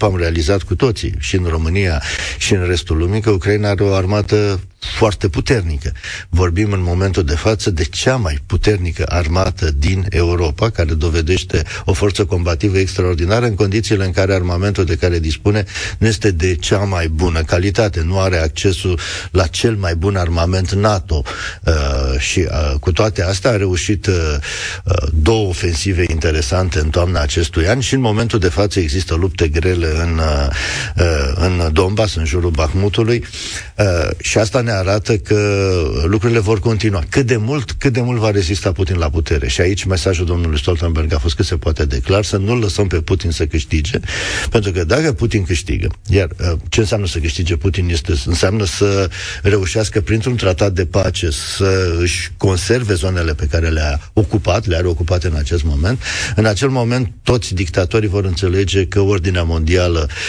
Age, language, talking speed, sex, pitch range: 50-69, Romanian, 170 wpm, male, 85-105 Hz